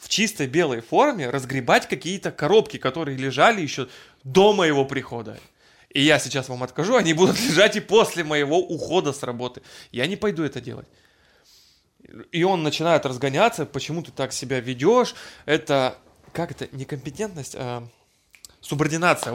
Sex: male